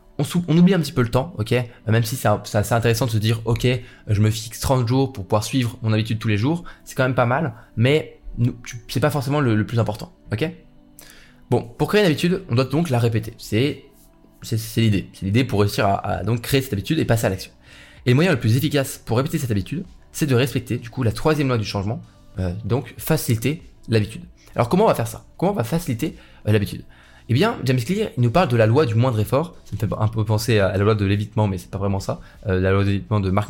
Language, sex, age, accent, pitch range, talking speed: French, male, 20-39, French, 105-135 Hz, 265 wpm